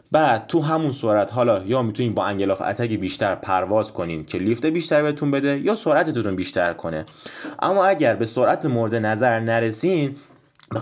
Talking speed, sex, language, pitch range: 165 wpm, male, Persian, 100-140 Hz